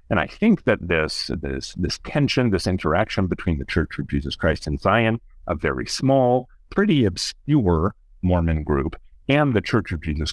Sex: male